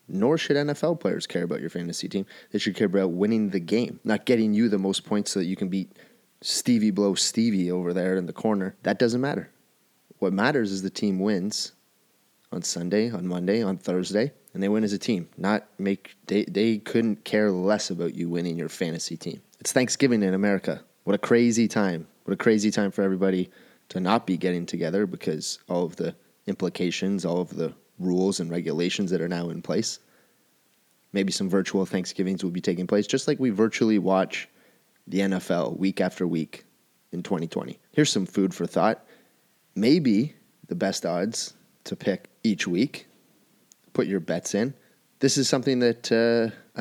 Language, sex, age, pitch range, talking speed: English, male, 20-39, 95-110 Hz, 185 wpm